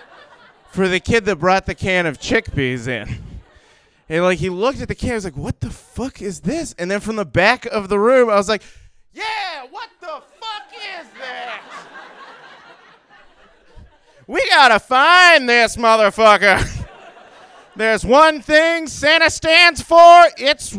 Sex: male